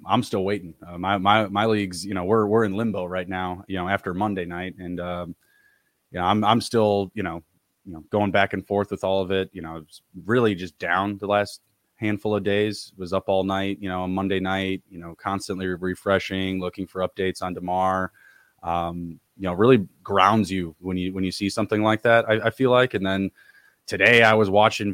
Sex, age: male, 20-39